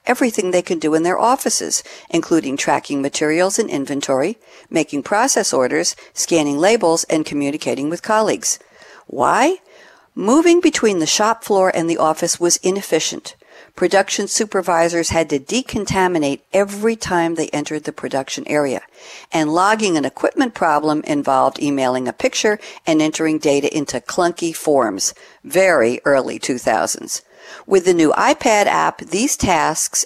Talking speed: 140 wpm